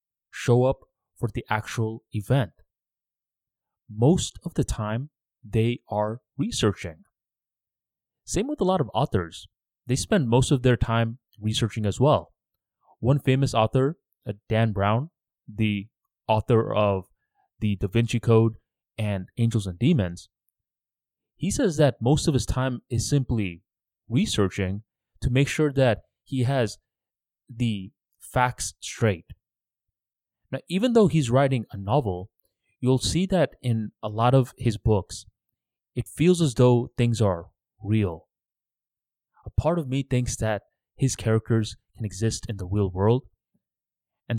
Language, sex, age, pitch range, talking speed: English, male, 20-39, 105-130 Hz, 135 wpm